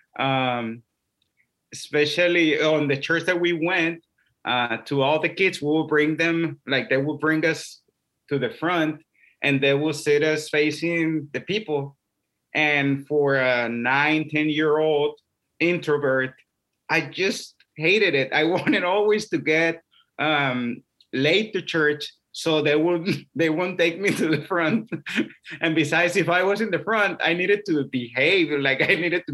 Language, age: English, 30-49